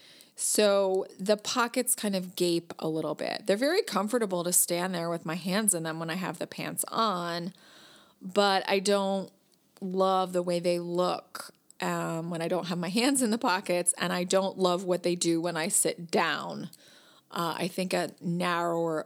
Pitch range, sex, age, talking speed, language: 170-210 Hz, female, 30-49, 190 wpm, English